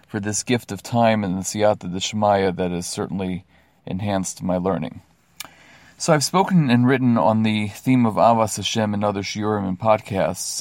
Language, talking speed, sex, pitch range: English, 180 wpm, male, 100-125 Hz